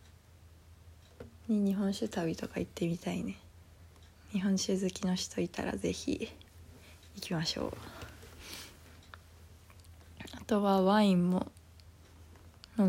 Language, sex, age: Japanese, female, 20-39